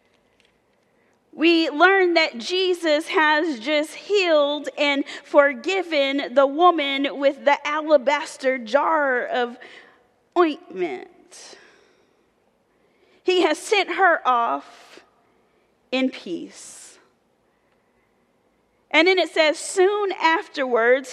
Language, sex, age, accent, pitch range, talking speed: English, female, 30-49, American, 280-355 Hz, 85 wpm